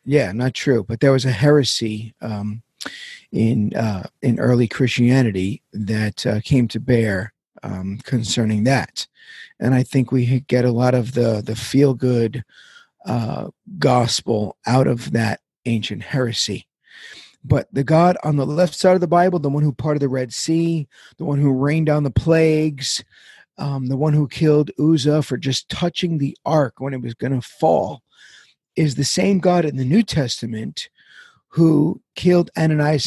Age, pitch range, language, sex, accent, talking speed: 40-59, 125-150 Hz, English, male, American, 165 wpm